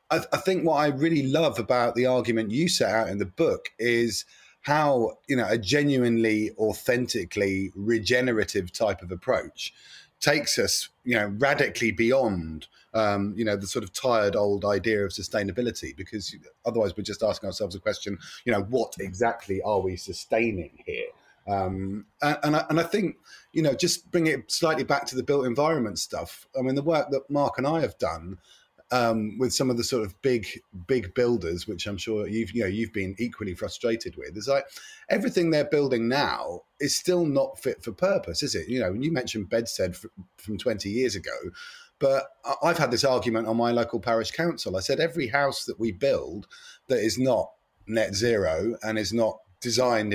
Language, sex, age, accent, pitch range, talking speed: English, male, 30-49, British, 105-135 Hz, 195 wpm